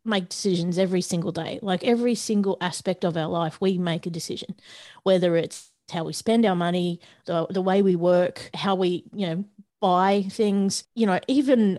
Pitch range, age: 185-220 Hz, 30-49